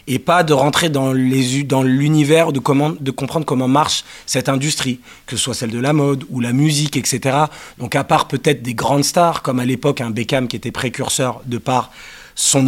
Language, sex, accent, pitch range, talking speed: French, male, French, 125-150 Hz, 220 wpm